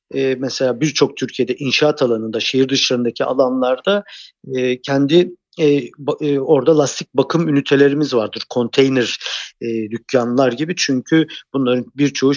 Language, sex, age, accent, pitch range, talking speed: Turkish, male, 50-69, native, 125-155 Hz, 125 wpm